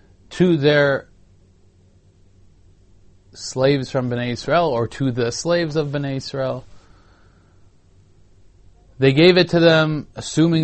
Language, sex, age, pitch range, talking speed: English, male, 20-39, 95-135 Hz, 105 wpm